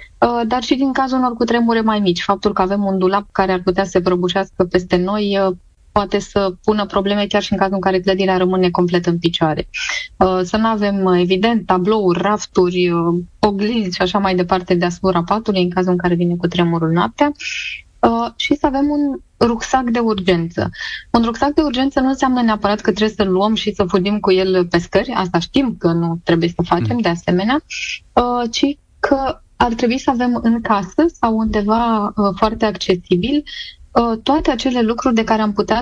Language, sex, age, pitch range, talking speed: Romanian, female, 20-39, 185-230 Hz, 190 wpm